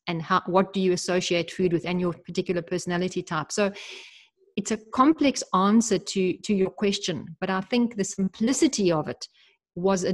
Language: English